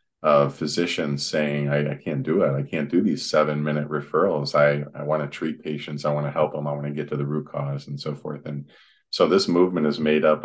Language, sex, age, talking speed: English, male, 40-59, 240 wpm